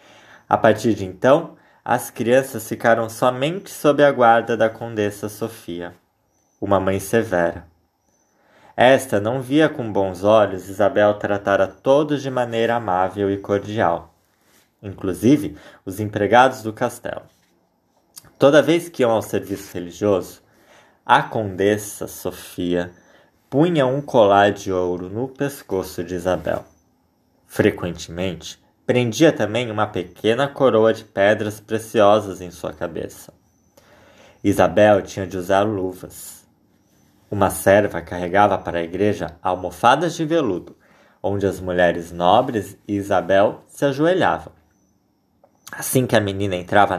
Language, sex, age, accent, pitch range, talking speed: Portuguese, male, 20-39, Brazilian, 95-115 Hz, 120 wpm